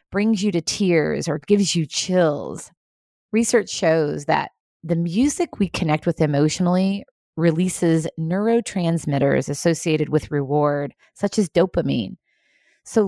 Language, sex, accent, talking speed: English, female, American, 120 wpm